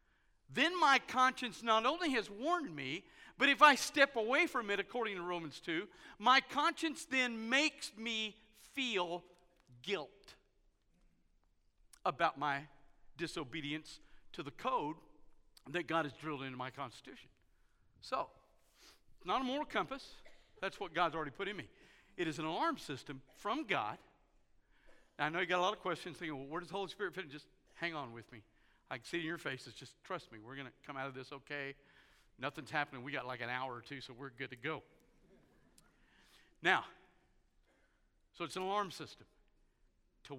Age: 50-69